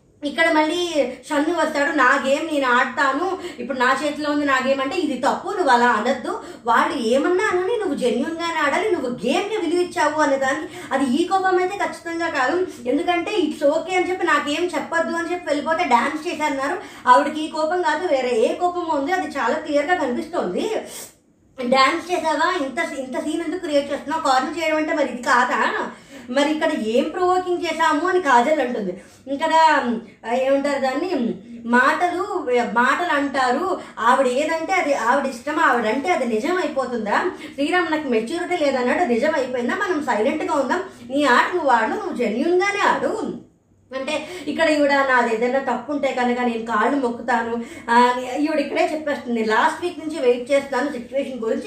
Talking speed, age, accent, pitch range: 155 wpm, 20-39, native, 255-330 Hz